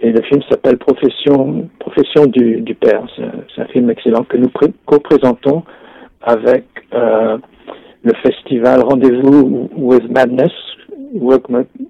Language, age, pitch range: French, 60-79, 115-145 Hz